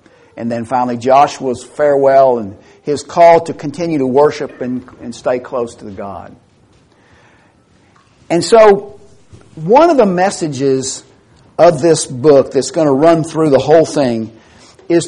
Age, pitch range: 50-69, 125-170 Hz